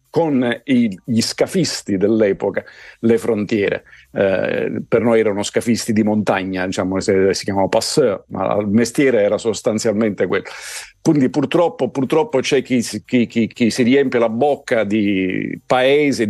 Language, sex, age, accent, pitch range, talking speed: Italian, male, 50-69, native, 105-140 Hz, 140 wpm